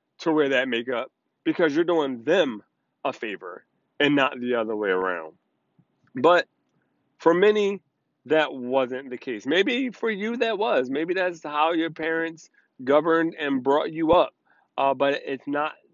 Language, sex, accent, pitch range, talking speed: English, male, American, 135-180 Hz, 160 wpm